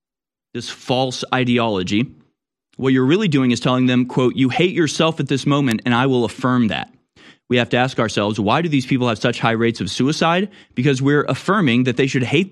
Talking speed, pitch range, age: 210 wpm, 115-145 Hz, 30-49